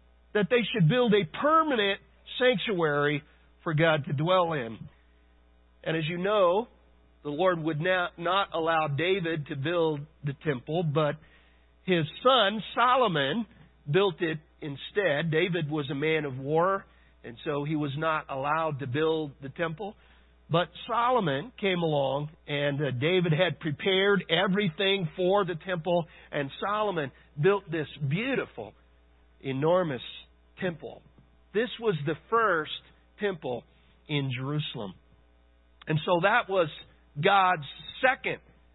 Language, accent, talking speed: English, American, 125 wpm